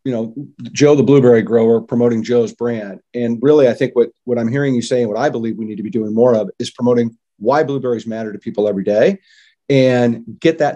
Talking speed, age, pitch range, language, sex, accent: 235 wpm, 40-59, 115-135 Hz, English, male, American